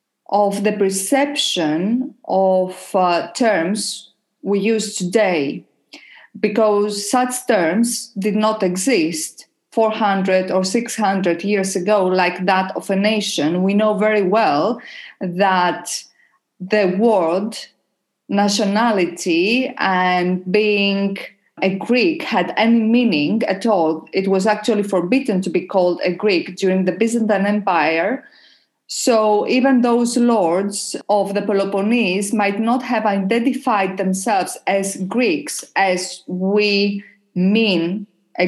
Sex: female